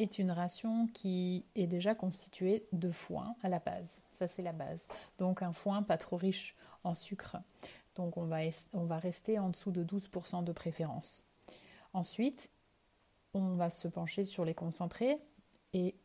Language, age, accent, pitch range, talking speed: French, 30-49, French, 175-215 Hz, 170 wpm